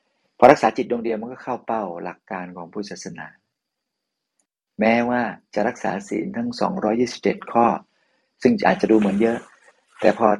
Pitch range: 100-110 Hz